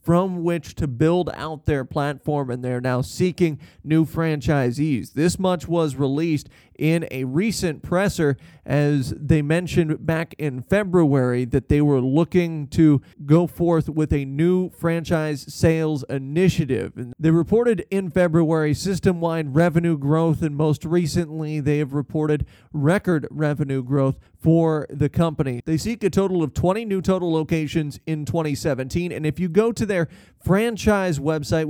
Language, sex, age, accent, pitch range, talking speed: English, male, 30-49, American, 145-165 Hz, 150 wpm